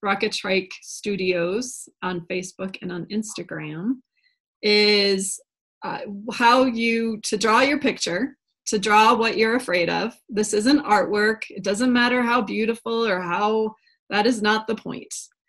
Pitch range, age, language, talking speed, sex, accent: 200-245 Hz, 20-39, English, 145 wpm, female, American